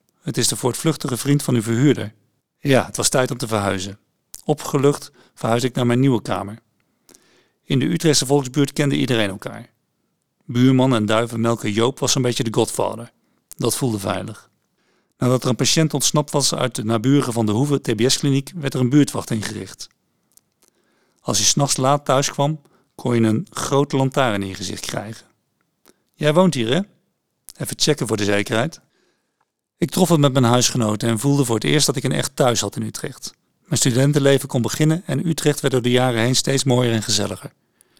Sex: male